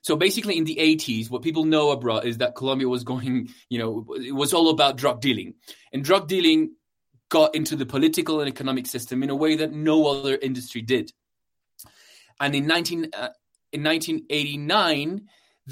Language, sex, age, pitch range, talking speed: English, male, 20-39, 130-175 Hz, 175 wpm